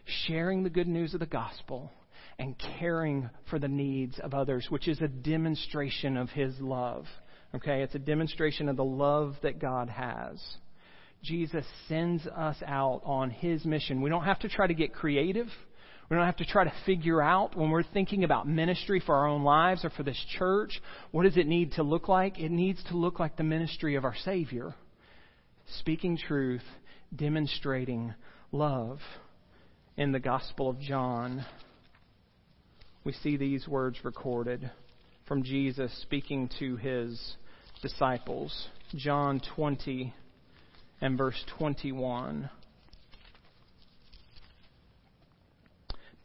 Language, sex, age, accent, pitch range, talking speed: English, male, 40-59, American, 130-170 Hz, 140 wpm